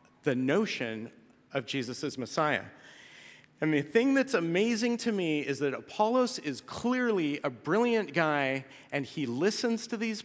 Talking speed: 150 wpm